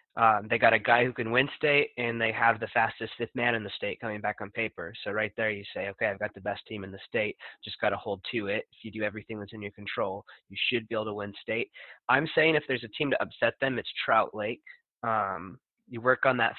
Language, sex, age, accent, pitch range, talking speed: English, male, 20-39, American, 105-125 Hz, 270 wpm